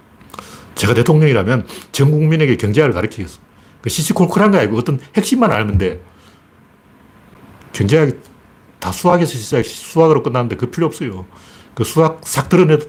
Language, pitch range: Korean, 105-175 Hz